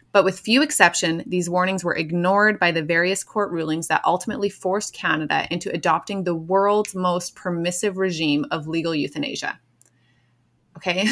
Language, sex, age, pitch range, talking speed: English, female, 20-39, 170-200 Hz, 150 wpm